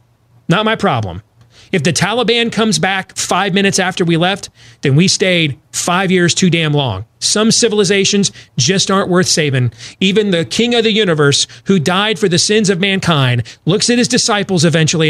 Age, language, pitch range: 30-49, English, 130-210 Hz